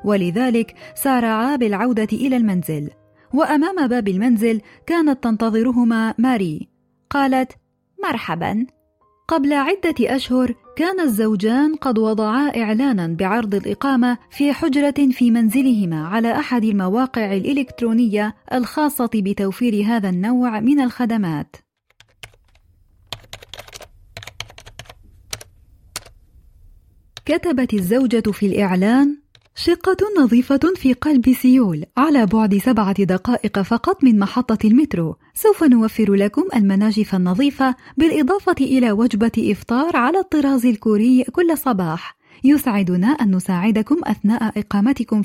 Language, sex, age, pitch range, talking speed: Arabic, female, 30-49, 200-270 Hz, 95 wpm